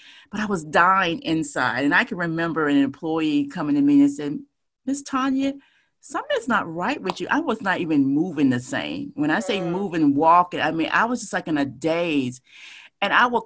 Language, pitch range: English, 160-235 Hz